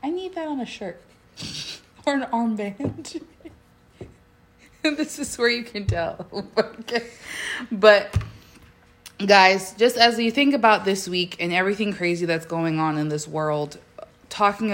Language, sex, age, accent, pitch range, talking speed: English, female, 20-39, American, 170-220 Hz, 140 wpm